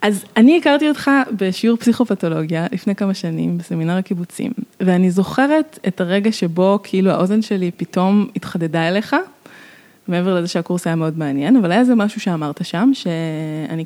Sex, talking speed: female, 150 wpm